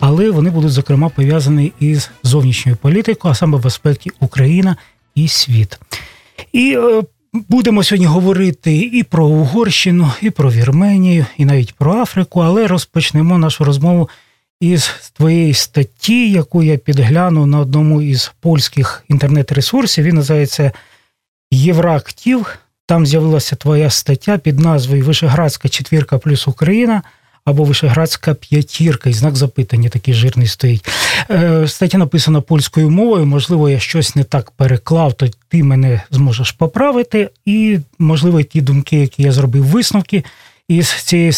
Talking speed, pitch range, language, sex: 130 wpm, 135-175 Hz, Russian, male